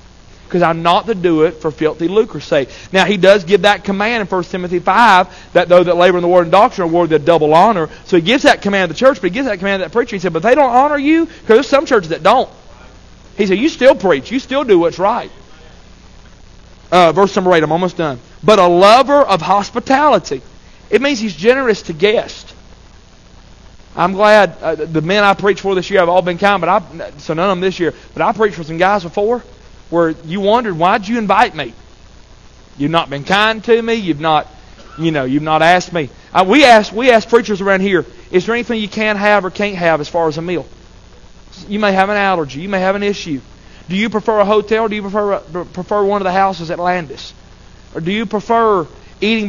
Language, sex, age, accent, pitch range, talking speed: English, male, 40-59, American, 160-210 Hz, 235 wpm